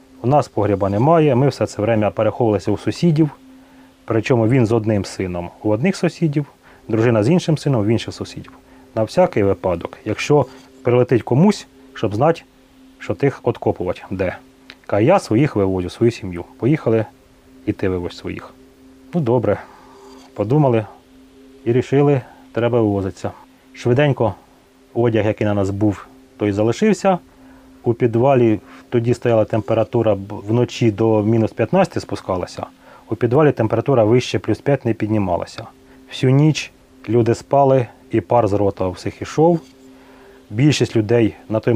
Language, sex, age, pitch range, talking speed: Ukrainian, male, 30-49, 105-135 Hz, 140 wpm